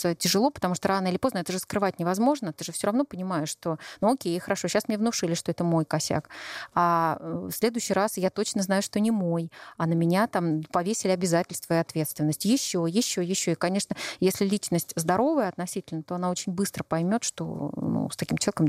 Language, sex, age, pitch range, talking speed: Russian, female, 30-49, 170-210 Hz, 200 wpm